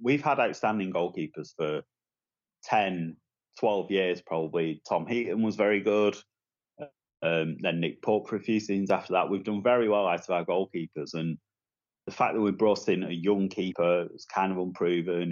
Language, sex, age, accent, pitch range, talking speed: English, male, 30-49, British, 85-100 Hz, 180 wpm